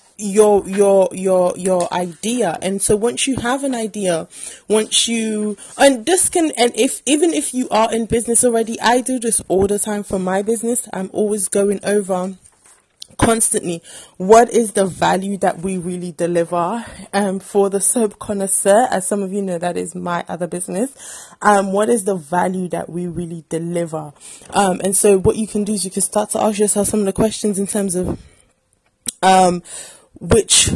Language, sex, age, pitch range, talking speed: English, female, 20-39, 185-230 Hz, 185 wpm